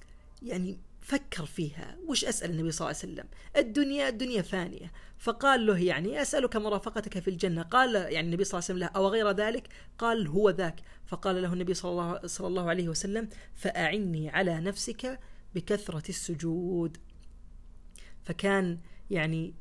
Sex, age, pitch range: female, 30-49, 165-205 Hz